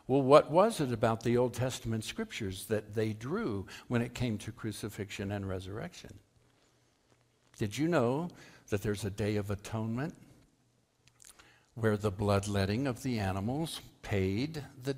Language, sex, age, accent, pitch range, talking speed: English, male, 60-79, American, 100-135 Hz, 145 wpm